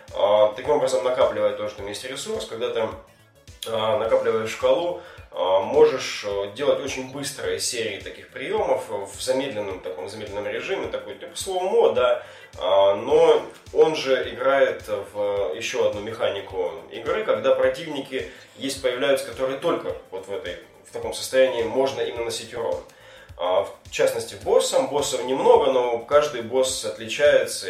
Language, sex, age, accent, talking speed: Russian, male, 20-39, native, 125 wpm